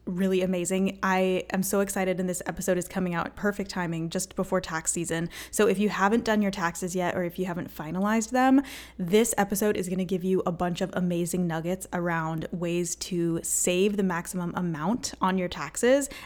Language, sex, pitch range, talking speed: English, female, 180-220 Hz, 205 wpm